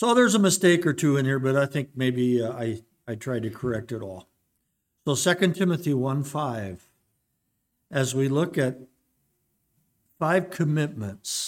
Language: English